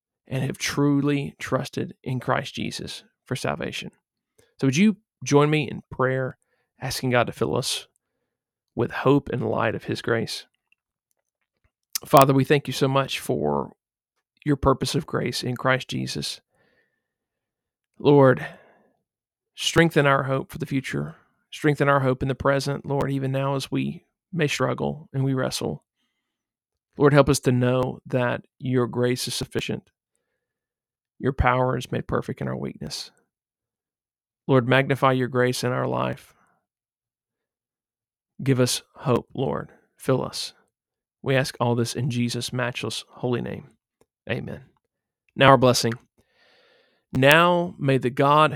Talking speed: 140 wpm